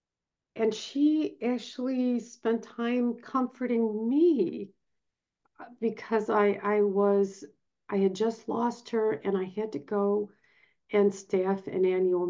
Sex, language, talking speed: female, English, 120 wpm